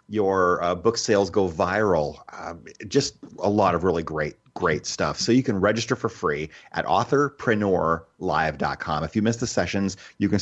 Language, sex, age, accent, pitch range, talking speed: English, male, 30-49, American, 85-110 Hz, 175 wpm